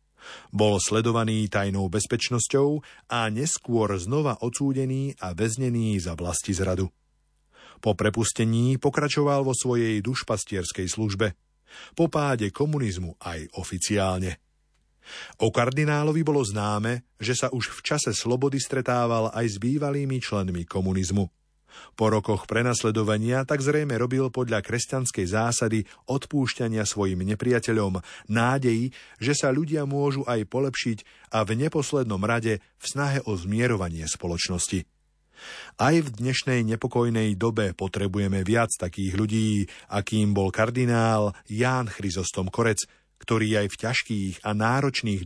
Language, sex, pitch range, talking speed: Slovak, male, 100-125 Hz, 120 wpm